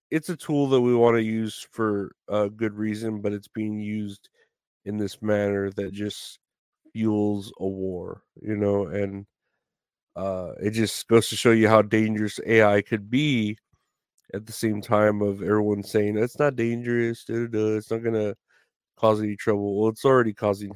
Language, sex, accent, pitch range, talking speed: English, male, American, 100-110 Hz, 180 wpm